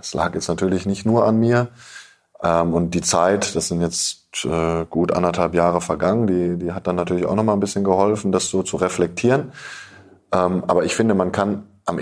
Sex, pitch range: male, 85-100 Hz